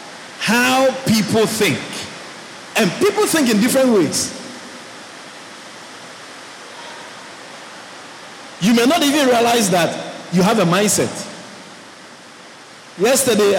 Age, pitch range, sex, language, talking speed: 50-69, 140-185 Hz, male, English, 90 wpm